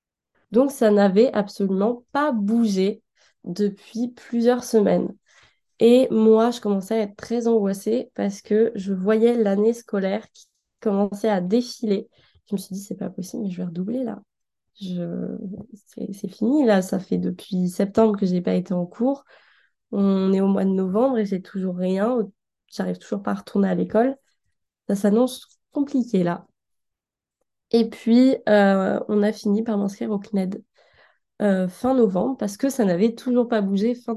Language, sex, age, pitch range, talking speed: French, female, 20-39, 195-235 Hz, 170 wpm